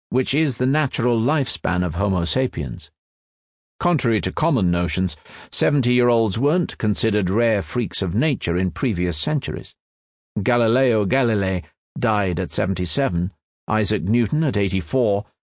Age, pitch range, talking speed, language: 50-69, 90-125 Hz, 120 wpm, German